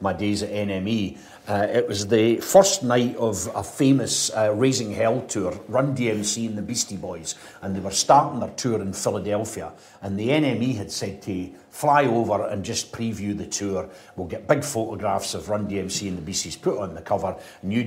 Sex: male